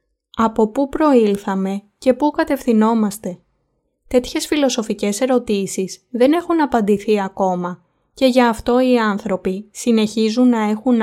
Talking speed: 115 wpm